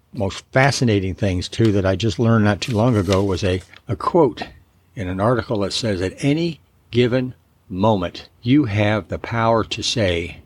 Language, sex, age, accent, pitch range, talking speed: English, male, 60-79, American, 95-125 Hz, 180 wpm